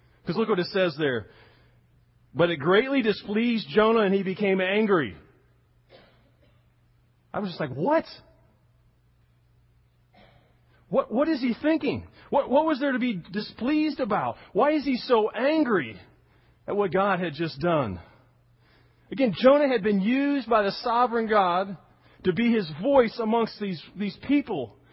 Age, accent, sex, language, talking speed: 40-59, American, male, English, 150 wpm